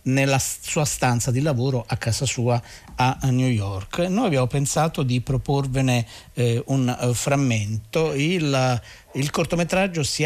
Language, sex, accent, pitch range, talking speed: Italian, male, native, 115-140 Hz, 140 wpm